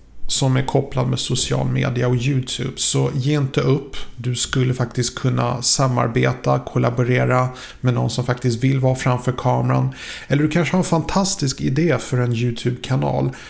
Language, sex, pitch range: Swedish, male, 125-145 Hz